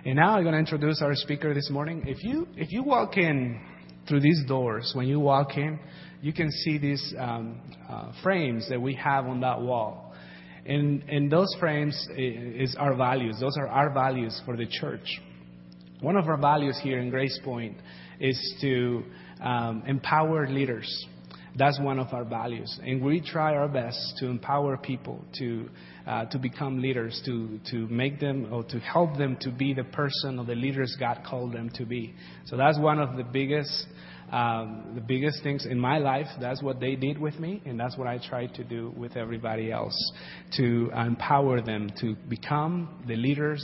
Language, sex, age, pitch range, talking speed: English, male, 30-49, 120-150 Hz, 185 wpm